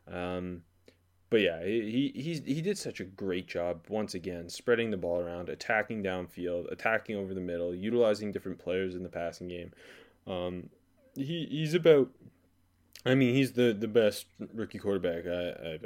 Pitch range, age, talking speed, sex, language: 90-120 Hz, 20-39, 165 wpm, male, English